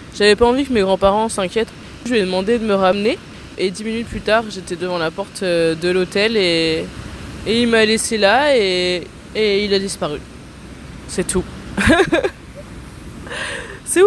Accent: French